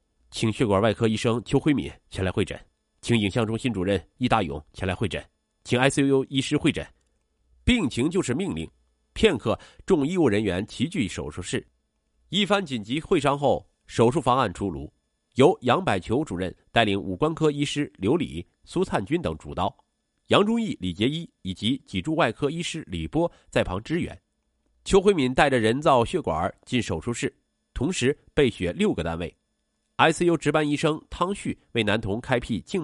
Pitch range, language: 100-155 Hz, Chinese